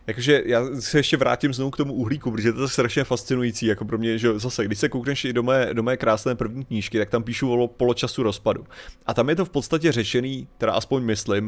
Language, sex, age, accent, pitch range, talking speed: Czech, male, 30-49, native, 110-135 Hz, 245 wpm